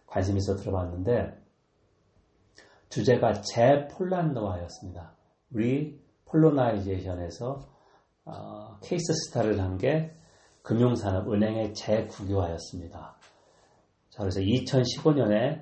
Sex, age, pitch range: male, 40-59, 100-130 Hz